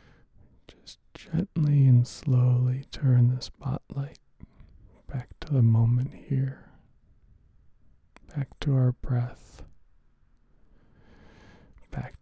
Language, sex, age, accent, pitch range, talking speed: English, male, 40-59, American, 110-135 Hz, 80 wpm